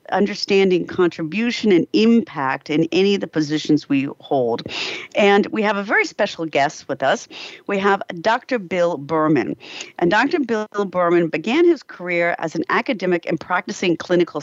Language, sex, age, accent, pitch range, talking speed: English, female, 50-69, American, 155-205 Hz, 160 wpm